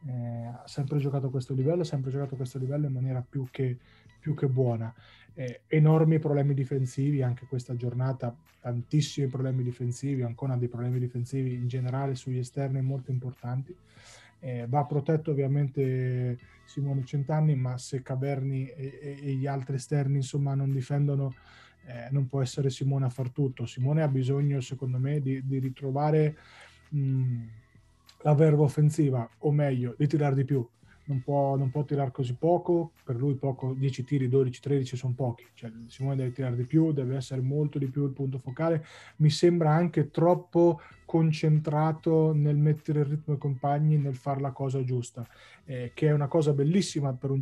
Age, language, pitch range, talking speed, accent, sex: 20-39, Italian, 125-145 Hz, 170 wpm, native, male